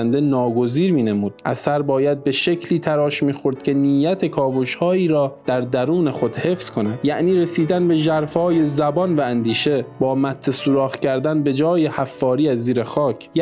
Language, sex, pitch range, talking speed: Persian, male, 130-170 Hz, 155 wpm